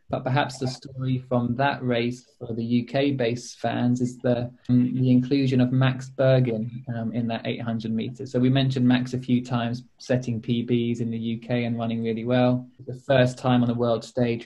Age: 20-39